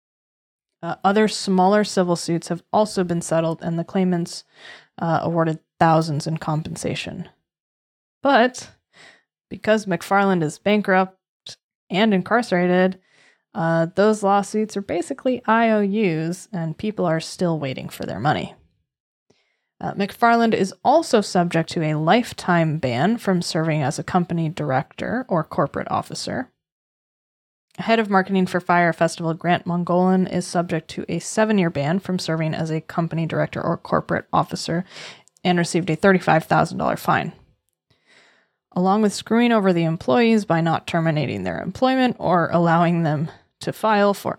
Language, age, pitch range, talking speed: English, 20-39, 165-200 Hz, 135 wpm